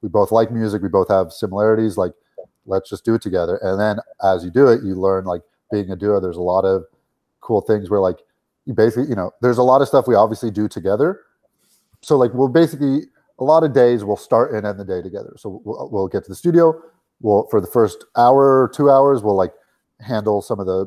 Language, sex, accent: English, male, American